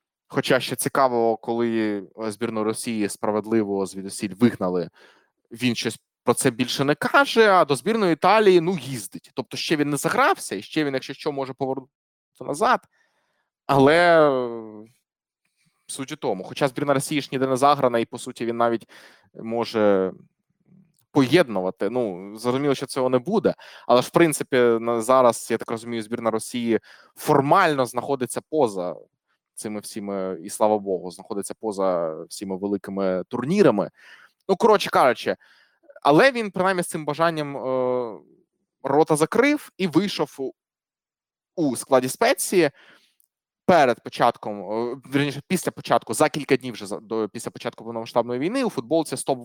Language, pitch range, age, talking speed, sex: Ukrainian, 115-155 Hz, 20-39, 135 wpm, male